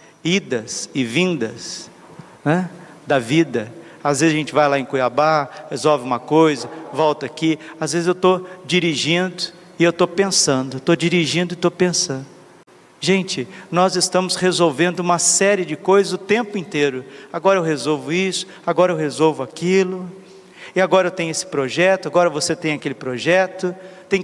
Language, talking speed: Portuguese, 160 wpm